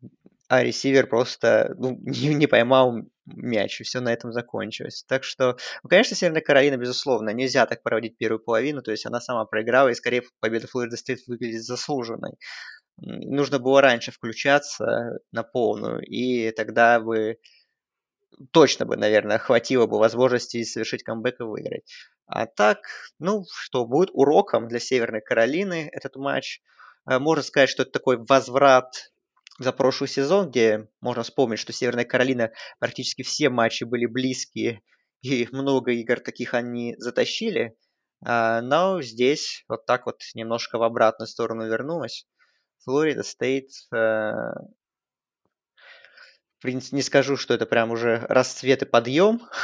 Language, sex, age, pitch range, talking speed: Russian, male, 20-39, 115-135 Hz, 140 wpm